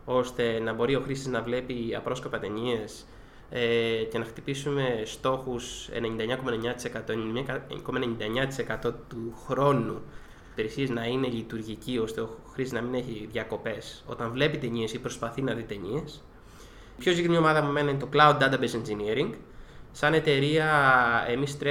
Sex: male